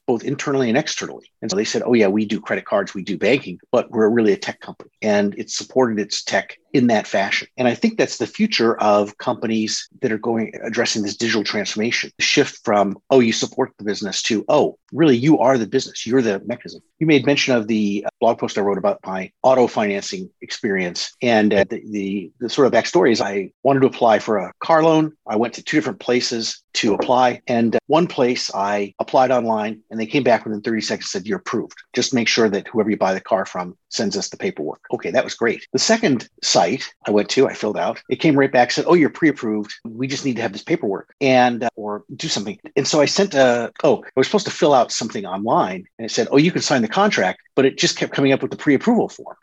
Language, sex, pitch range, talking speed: English, male, 105-135 Hz, 240 wpm